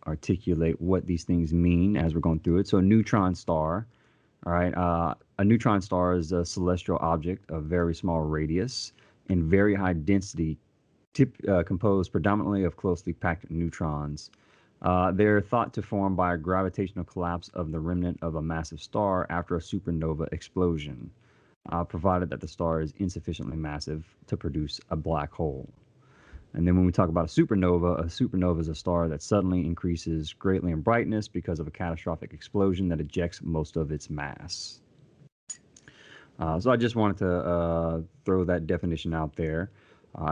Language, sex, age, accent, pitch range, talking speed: English, male, 30-49, American, 80-95 Hz, 170 wpm